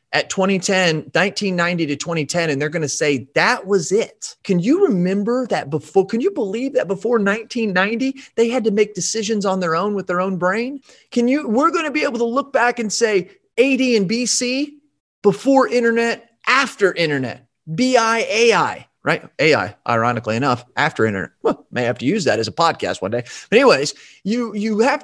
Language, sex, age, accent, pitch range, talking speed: English, male, 30-49, American, 145-220 Hz, 185 wpm